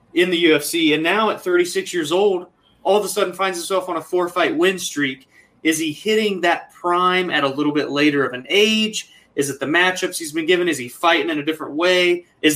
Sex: male